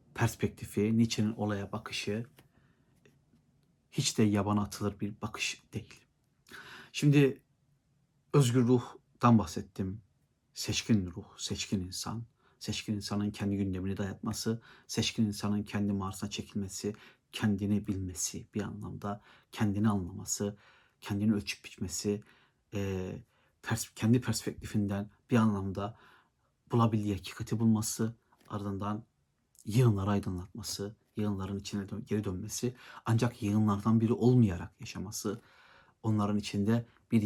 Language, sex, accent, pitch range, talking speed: Turkish, male, native, 100-115 Hz, 100 wpm